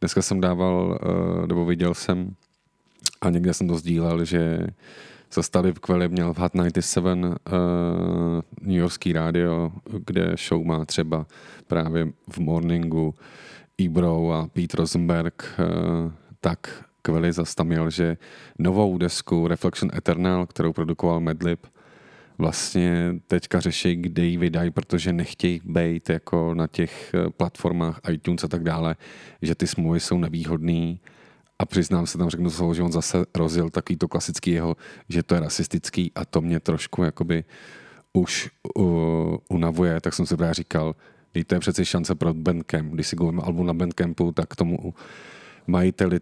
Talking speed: 145 wpm